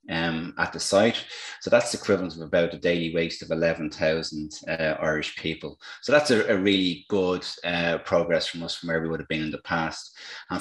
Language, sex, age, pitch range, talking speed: English, male, 30-49, 85-100 Hz, 210 wpm